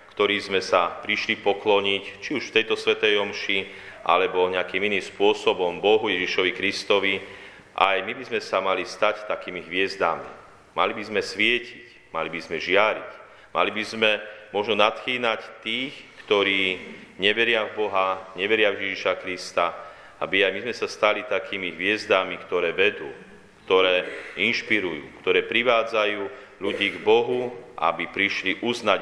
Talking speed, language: 145 wpm, Slovak